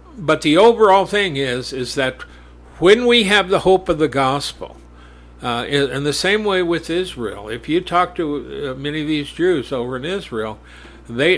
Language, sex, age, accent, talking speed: English, male, 60-79, American, 190 wpm